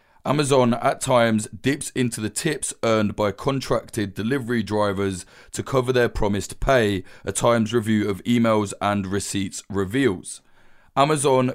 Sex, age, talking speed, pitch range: male, 20-39, 135 wpm, 105-125 Hz